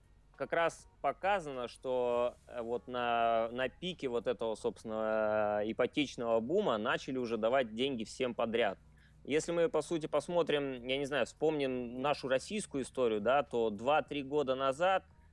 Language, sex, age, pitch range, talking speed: Russian, male, 20-39, 105-135 Hz, 140 wpm